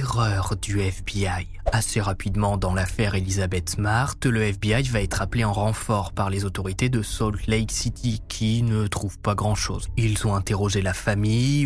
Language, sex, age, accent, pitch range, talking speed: French, male, 20-39, French, 100-120 Hz, 170 wpm